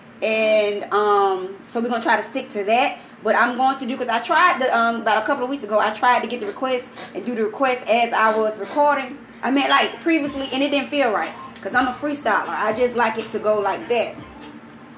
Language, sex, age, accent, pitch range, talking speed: English, female, 20-39, American, 220-275 Hz, 245 wpm